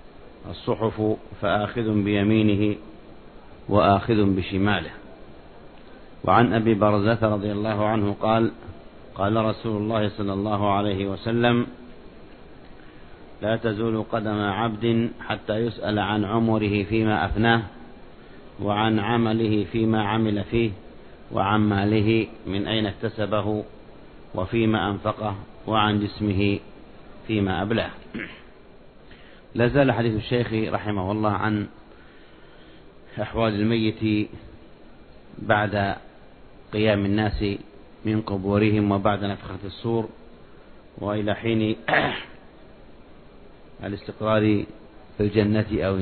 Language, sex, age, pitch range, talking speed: Arabic, male, 50-69, 100-110 Hz, 85 wpm